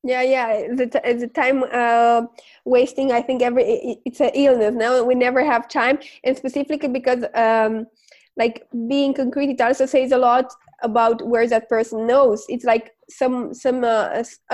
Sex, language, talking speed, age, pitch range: female, English, 170 wpm, 20-39, 235-280 Hz